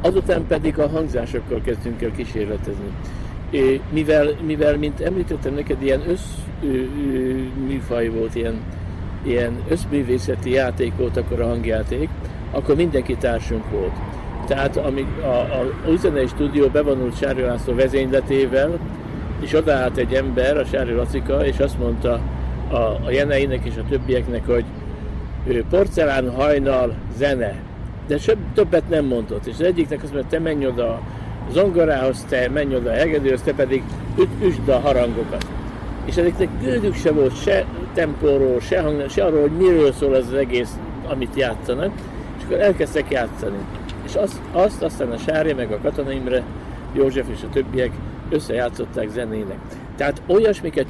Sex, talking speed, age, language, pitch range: male, 145 wpm, 60-79, Hungarian, 120-150 Hz